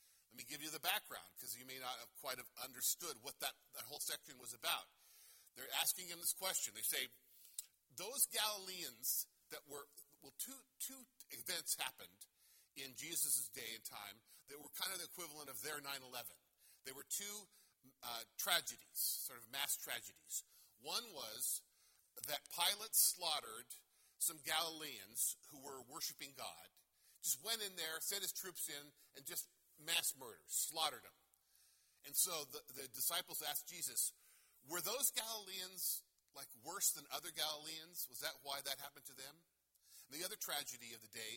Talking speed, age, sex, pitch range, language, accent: 160 wpm, 50-69, male, 140-195 Hz, English, American